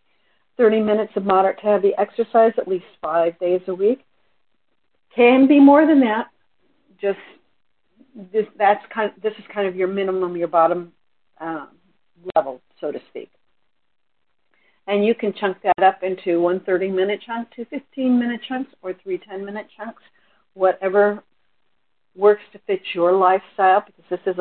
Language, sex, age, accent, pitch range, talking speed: English, female, 50-69, American, 175-215 Hz, 160 wpm